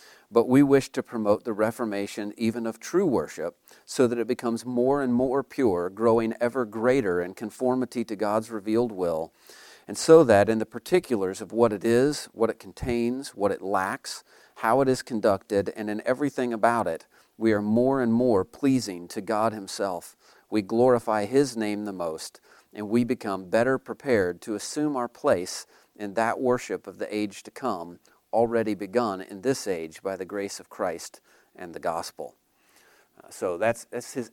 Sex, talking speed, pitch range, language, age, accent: male, 180 wpm, 105-125 Hz, English, 40-59, American